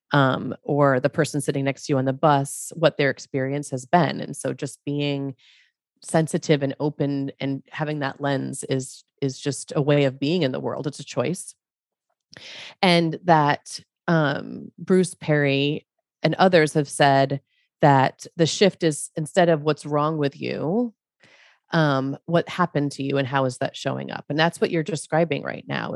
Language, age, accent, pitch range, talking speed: English, 30-49, American, 140-175 Hz, 180 wpm